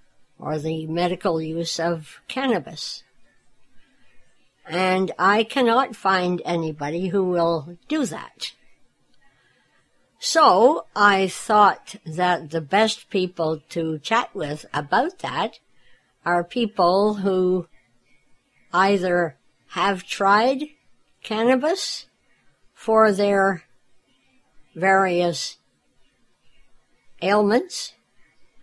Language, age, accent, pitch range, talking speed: English, 60-79, American, 165-205 Hz, 80 wpm